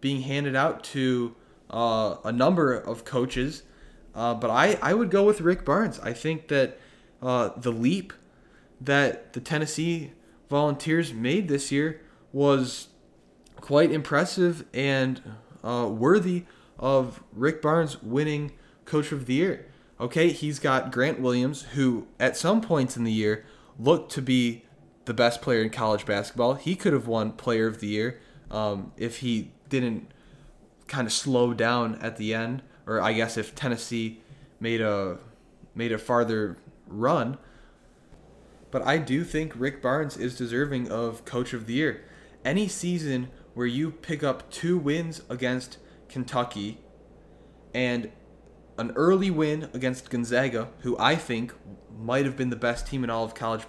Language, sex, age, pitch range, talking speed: English, male, 20-39, 115-145 Hz, 155 wpm